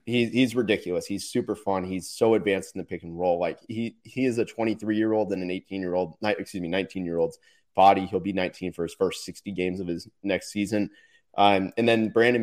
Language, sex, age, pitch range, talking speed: English, male, 30-49, 95-115 Hz, 240 wpm